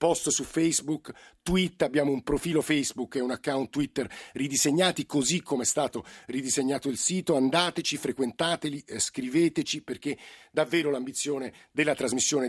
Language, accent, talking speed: Italian, native, 140 wpm